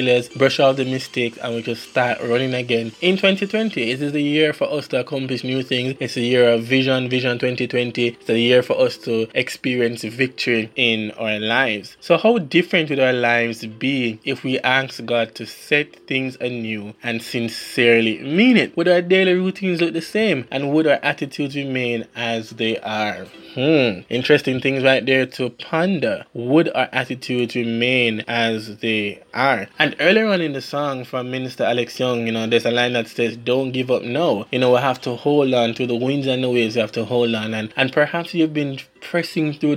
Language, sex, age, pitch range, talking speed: English, male, 20-39, 115-140 Hz, 205 wpm